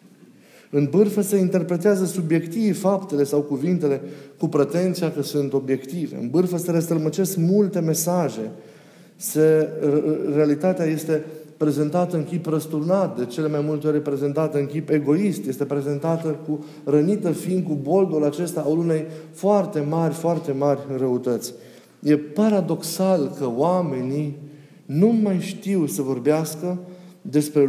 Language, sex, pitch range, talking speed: Romanian, male, 145-180 Hz, 130 wpm